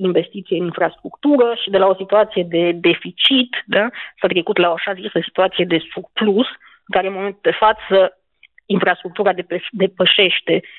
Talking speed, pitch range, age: 160 wpm, 180-210 Hz, 30-49